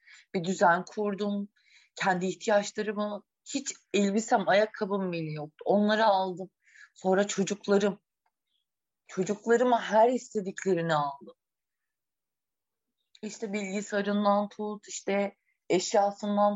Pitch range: 180-210 Hz